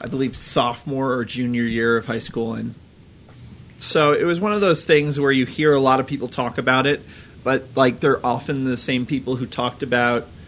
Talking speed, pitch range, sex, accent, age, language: 210 wpm, 120-145 Hz, male, American, 30-49, English